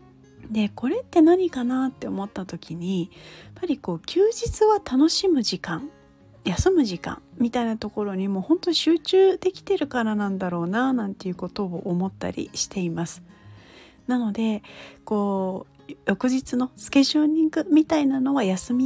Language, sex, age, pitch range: Japanese, female, 40-59, 195-285 Hz